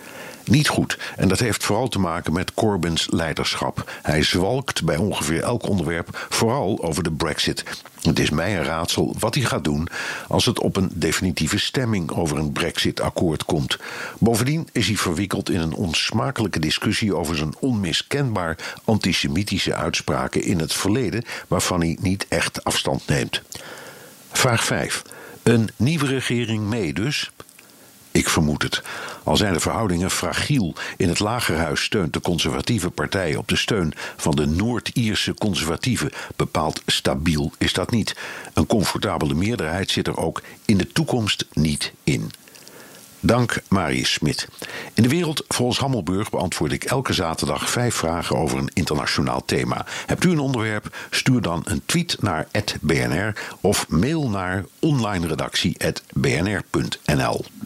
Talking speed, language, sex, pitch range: 145 wpm, Dutch, male, 80-115 Hz